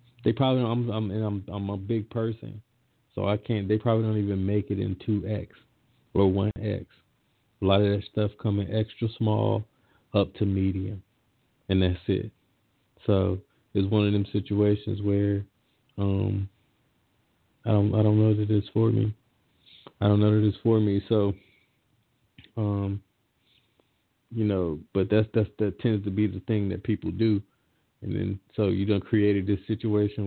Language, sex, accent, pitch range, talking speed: English, male, American, 100-110 Hz, 170 wpm